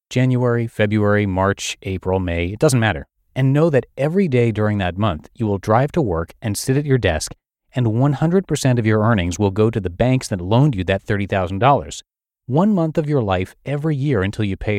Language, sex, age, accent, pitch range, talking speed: English, male, 30-49, American, 95-130 Hz, 205 wpm